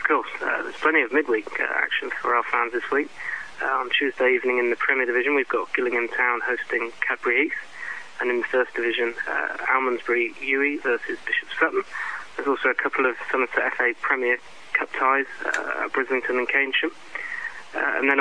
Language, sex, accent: English, male, British